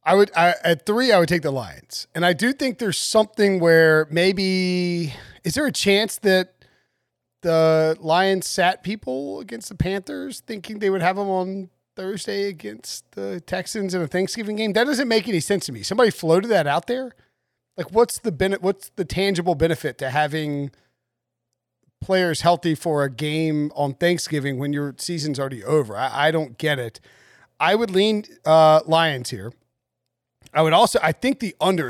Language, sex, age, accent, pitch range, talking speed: English, male, 30-49, American, 145-190 Hz, 180 wpm